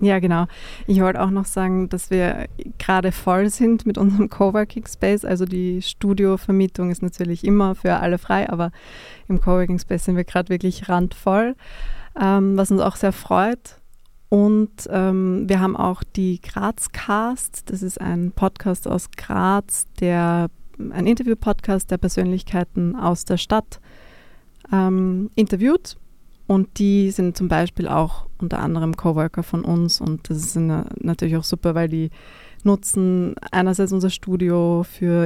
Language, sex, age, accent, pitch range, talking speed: German, female, 20-39, German, 170-195 Hz, 150 wpm